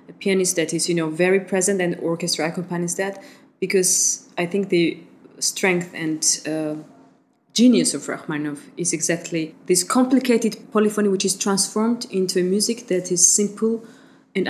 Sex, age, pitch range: female, 20-39, 160-195 Hz